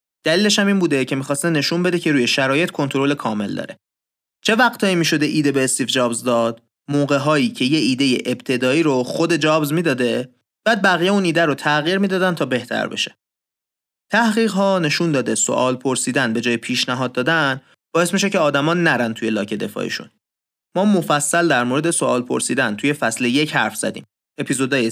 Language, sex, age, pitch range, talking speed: Persian, male, 30-49, 125-175 Hz, 170 wpm